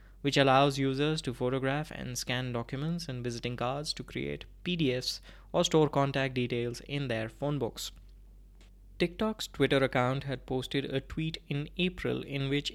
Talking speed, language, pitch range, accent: 155 wpm, English, 125-150 Hz, Indian